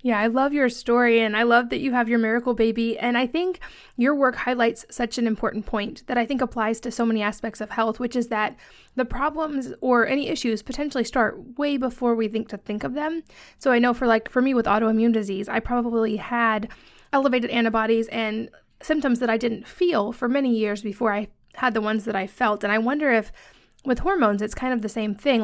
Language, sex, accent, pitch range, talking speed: English, female, American, 215-250 Hz, 225 wpm